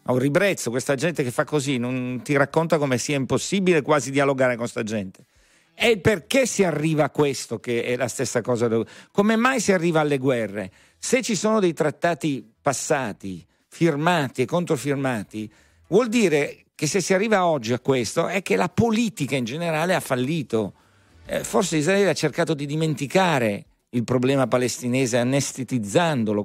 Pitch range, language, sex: 125-170 Hz, Italian, male